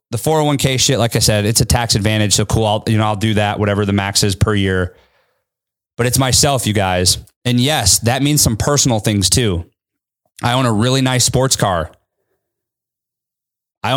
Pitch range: 110-140 Hz